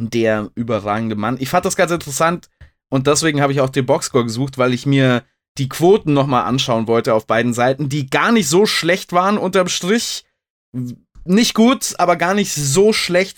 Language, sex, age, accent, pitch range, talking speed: German, male, 20-39, German, 140-185 Hz, 190 wpm